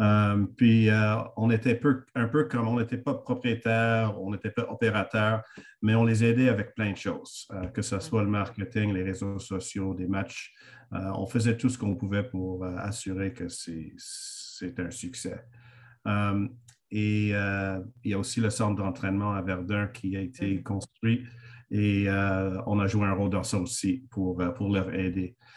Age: 50-69